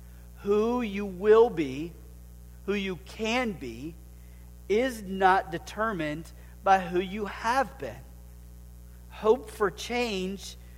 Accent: American